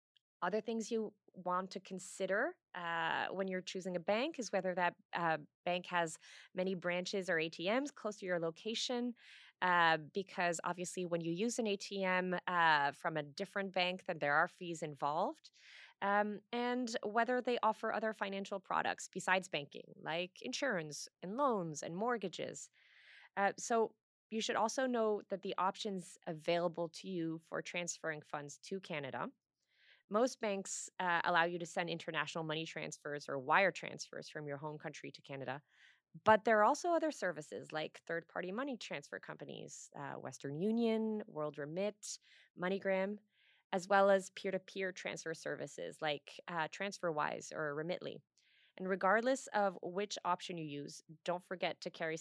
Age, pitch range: 20-39, 165-205 Hz